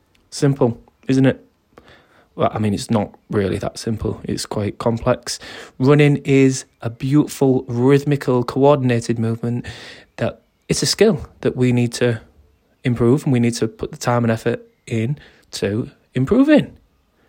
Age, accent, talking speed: 20-39, British, 145 wpm